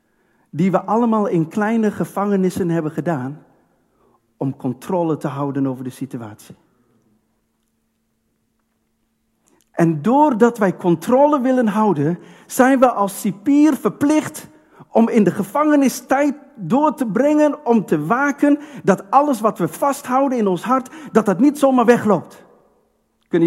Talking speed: 130 wpm